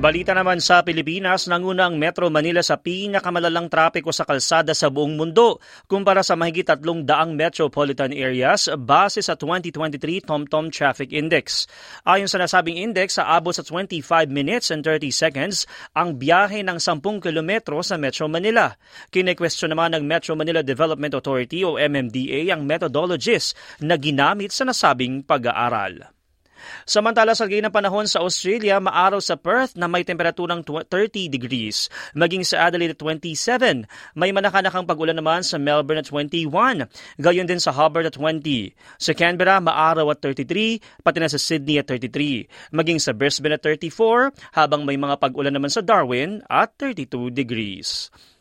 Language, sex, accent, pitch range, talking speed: Filipino, male, native, 150-185 Hz, 150 wpm